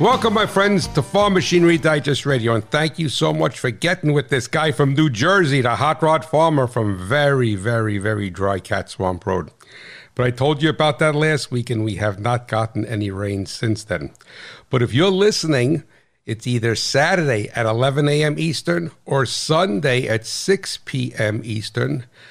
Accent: American